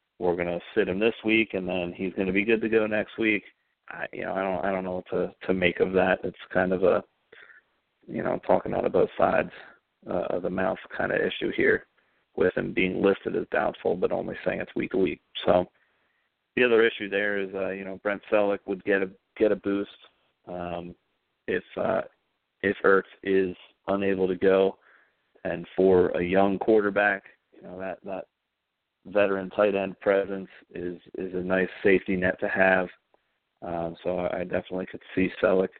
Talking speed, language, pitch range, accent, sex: 200 wpm, English, 95-100 Hz, American, male